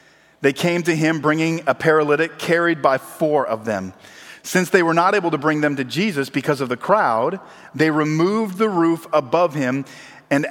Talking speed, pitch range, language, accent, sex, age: 190 wpm, 145-185 Hz, English, American, male, 40-59